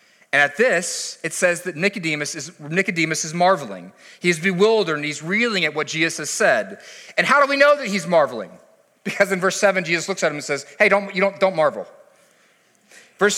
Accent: American